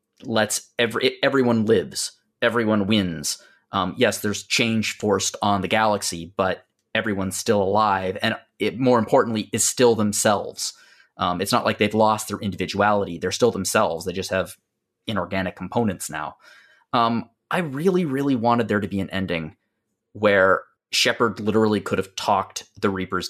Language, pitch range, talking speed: English, 95-115 Hz, 155 wpm